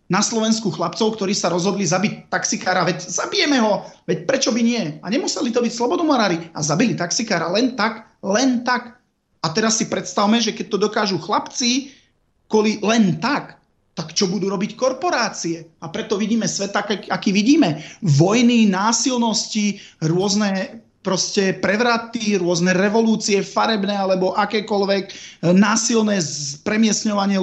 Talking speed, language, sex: 135 wpm, Slovak, male